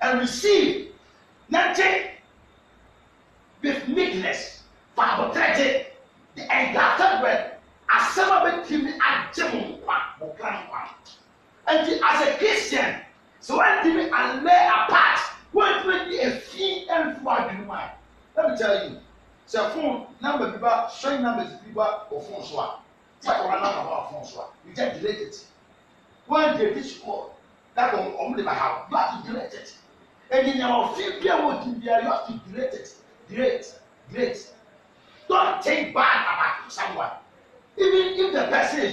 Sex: male